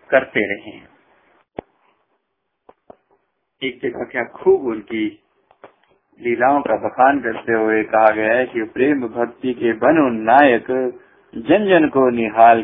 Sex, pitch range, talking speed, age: male, 110-130 Hz, 105 wpm, 50-69